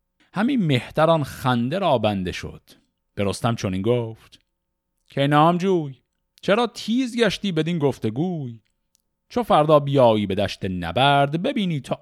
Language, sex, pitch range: Persian, male, 100-160 Hz